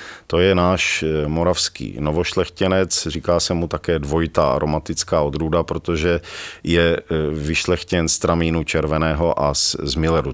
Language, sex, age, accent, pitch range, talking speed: Czech, male, 40-59, native, 75-90 Hz, 130 wpm